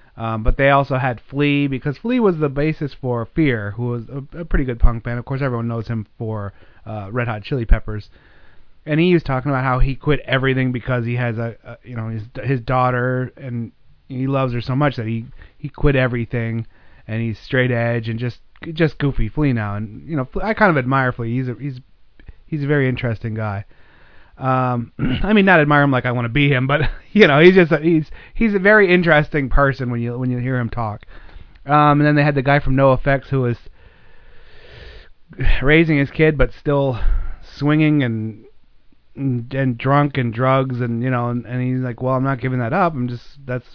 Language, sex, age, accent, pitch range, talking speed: English, male, 30-49, American, 115-145 Hz, 220 wpm